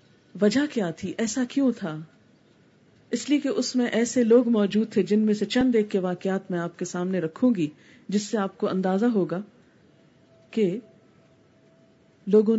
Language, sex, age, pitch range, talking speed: Urdu, female, 40-59, 195-255 Hz, 170 wpm